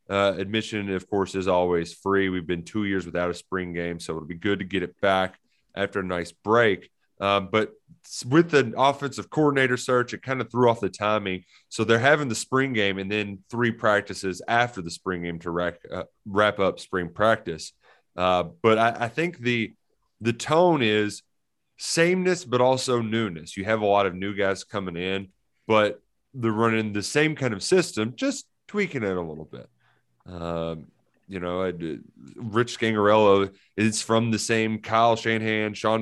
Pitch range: 95-115 Hz